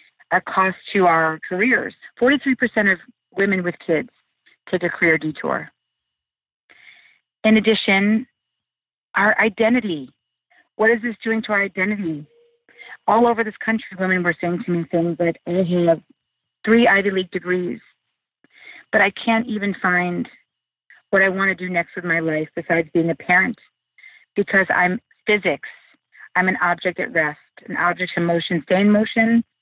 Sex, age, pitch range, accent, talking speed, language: female, 30-49, 175-220 Hz, American, 155 wpm, English